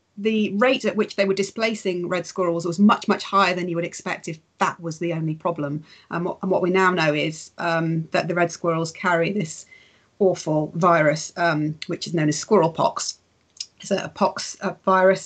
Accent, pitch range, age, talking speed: British, 160-190 Hz, 30-49, 195 wpm